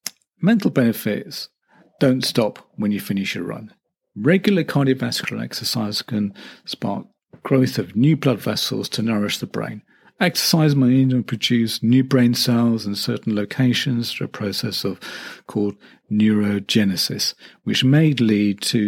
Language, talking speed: English, 135 wpm